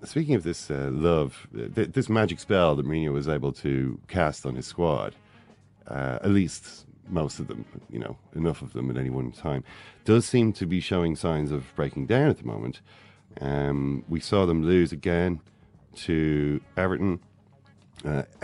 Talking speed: 175 wpm